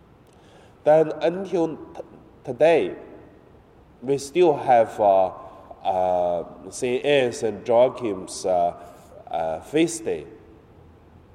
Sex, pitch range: male, 100-155 Hz